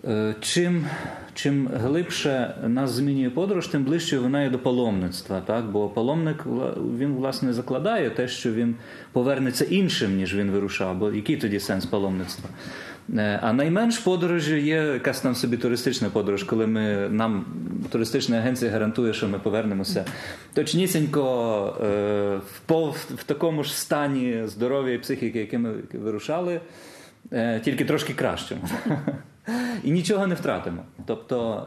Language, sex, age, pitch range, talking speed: Ukrainian, male, 30-49, 110-155 Hz, 130 wpm